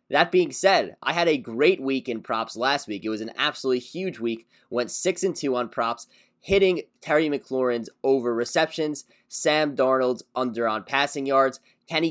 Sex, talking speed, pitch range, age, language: male, 170 wpm, 120-150 Hz, 20-39, English